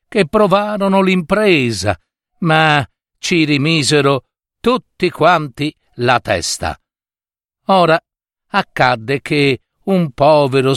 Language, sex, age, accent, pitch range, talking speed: Italian, male, 50-69, native, 125-180 Hz, 85 wpm